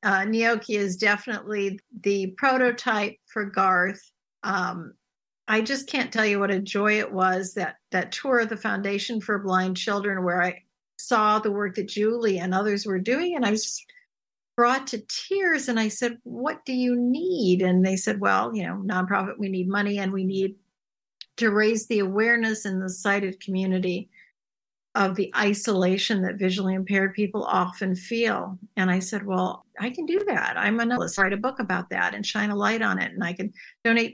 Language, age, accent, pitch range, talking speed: English, 60-79, American, 190-230 Hz, 190 wpm